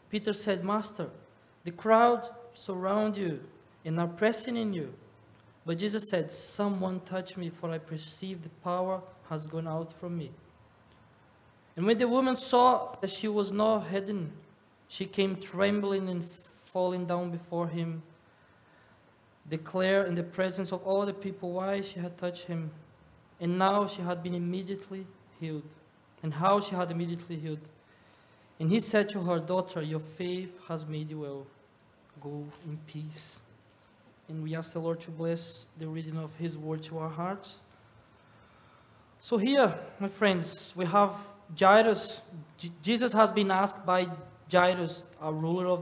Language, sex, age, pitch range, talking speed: English, male, 20-39, 160-195 Hz, 155 wpm